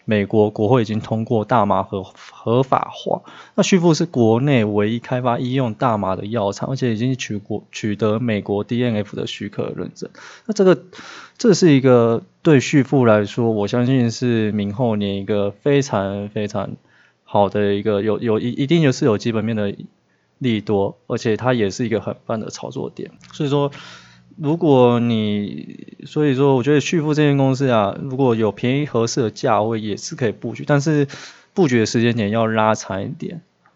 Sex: male